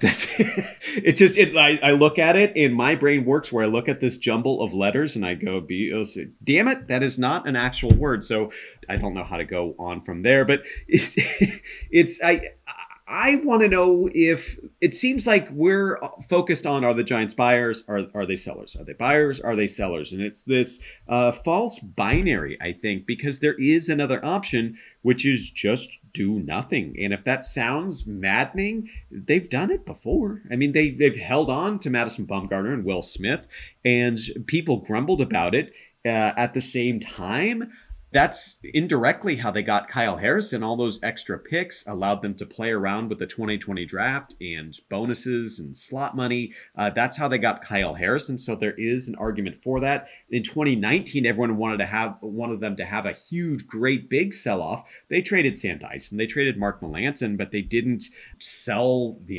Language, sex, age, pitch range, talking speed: English, male, 30-49, 105-150 Hz, 185 wpm